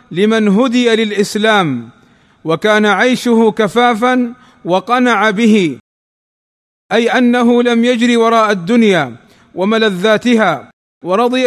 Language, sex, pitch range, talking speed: Arabic, male, 220-250 Hz, 85 wpm